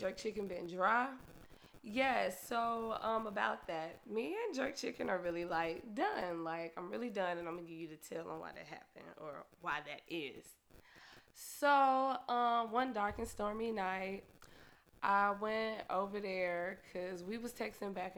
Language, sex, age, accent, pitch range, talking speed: English, female, 20-39, American, 180-230 Hz, 170 wpm